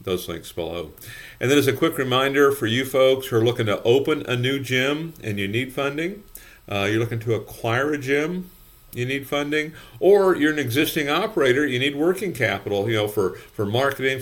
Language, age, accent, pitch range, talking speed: English, 50-69, American, 110-135 Hz, 205 wpm